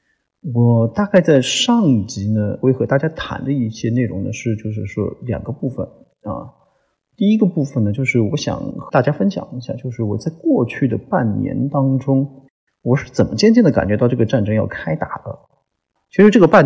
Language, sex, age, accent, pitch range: Chinese, male, 30-49, native, 115-150 Hz